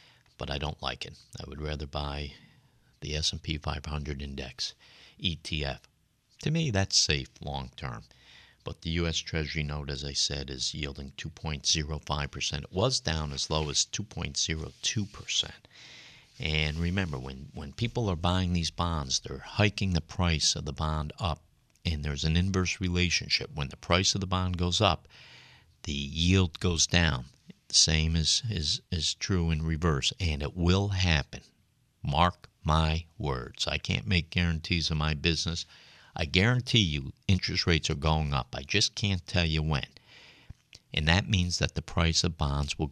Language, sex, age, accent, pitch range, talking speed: English, male, 50-69, American, 75-90 Hz, 160 wpm